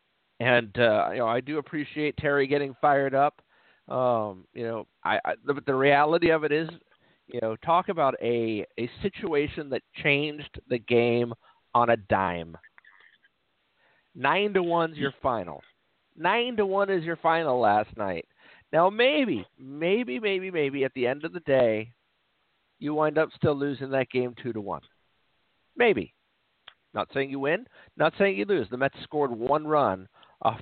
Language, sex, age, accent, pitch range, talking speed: English, male, 50-69, American, 120-155 Hz, 165 wpm